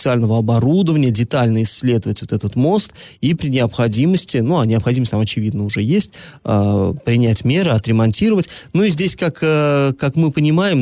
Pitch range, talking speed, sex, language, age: 115-150 Hz, 155 wpm, male, Russian, 20-39